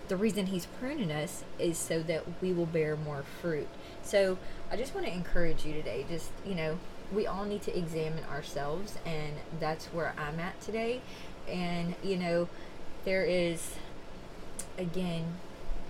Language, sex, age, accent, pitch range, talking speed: English, female, 20-39, American, 155-185 Hz, 160 wpm